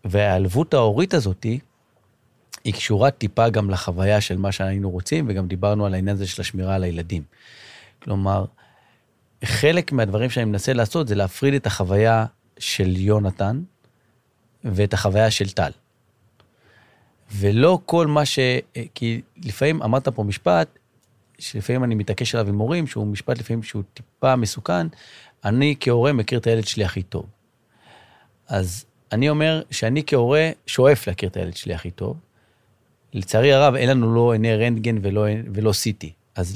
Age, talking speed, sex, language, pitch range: 40-59, 145 wpm, male, Hebrew, 100-125 Hz